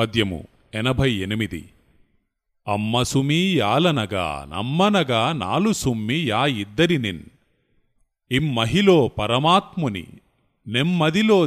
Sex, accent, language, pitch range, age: male, native, Telugu, 105-140 Hz, 30-49